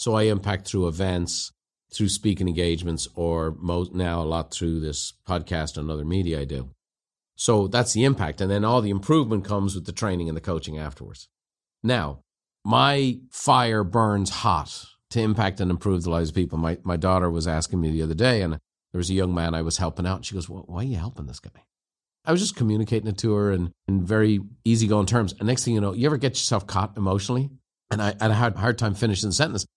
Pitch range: 85-115 Hz